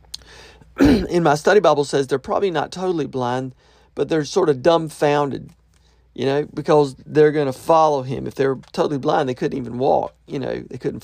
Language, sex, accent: English, male, American